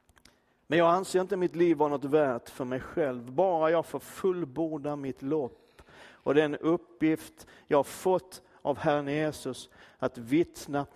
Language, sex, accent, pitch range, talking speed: Swedish, male, native, 125-165 Hz, 160 wpm